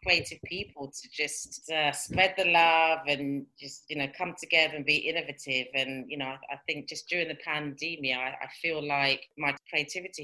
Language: English